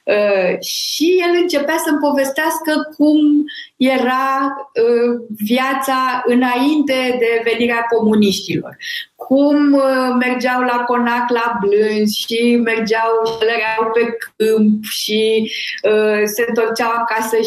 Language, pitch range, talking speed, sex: Romanian, 210-265 Hz, 105 wpm, female